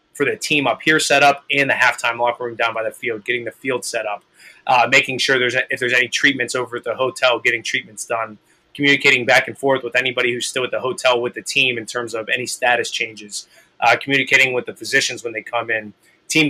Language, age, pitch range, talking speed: English, 20-39, 120-135 Hz, 245 wpm